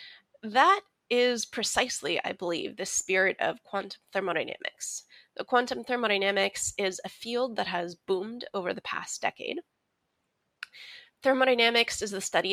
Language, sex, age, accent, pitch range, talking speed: English, female, 20-39, American, 185-245 Hz, 130 wpm